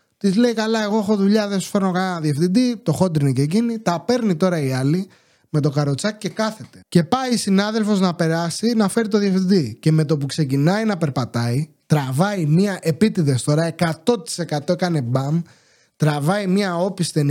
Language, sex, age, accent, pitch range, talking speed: English, male, 20-39, Greek, 160-225 Hz, 180 wpm